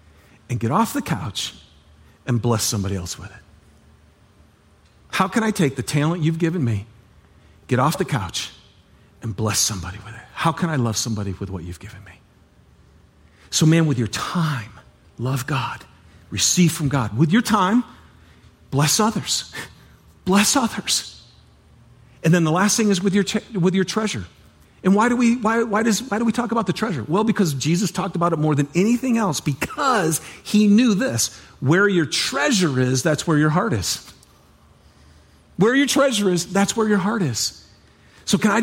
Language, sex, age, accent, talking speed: English, male, 50-69, American, 180 wpm